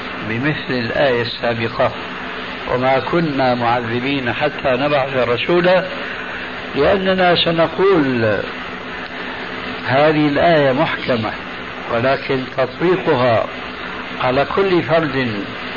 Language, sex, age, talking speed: Arabic, male, 60-79, 70 wpm